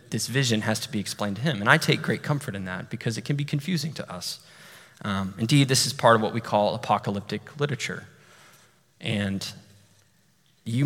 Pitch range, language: 105-135 Hz, English